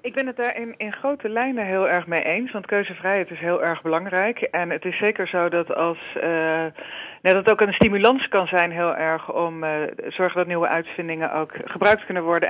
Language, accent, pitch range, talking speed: Dutch, Dutch, 175-215 Hz, 210 wpm